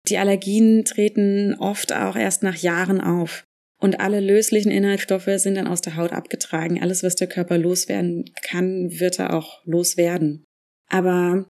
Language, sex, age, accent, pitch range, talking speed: German, female, 20-39, German, 180-210 Hz, 155 wpm